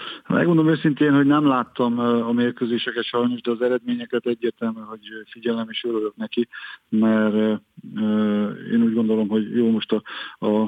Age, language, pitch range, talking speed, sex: 40-59, Hungarian, 105-115 Hz, 150 wpm, male